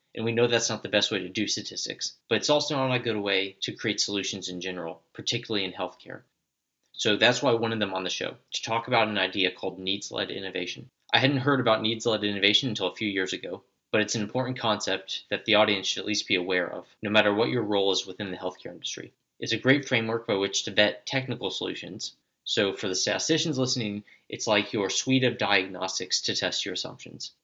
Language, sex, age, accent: English, male, 20-39, American